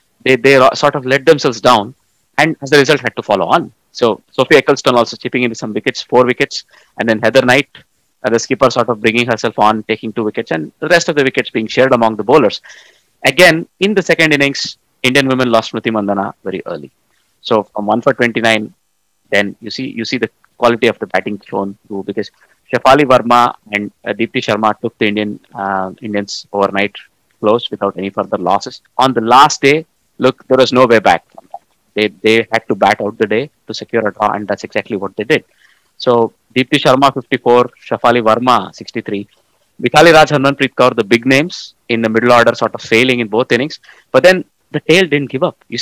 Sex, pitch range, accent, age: male, 110-140 Hz, Indian, 20-39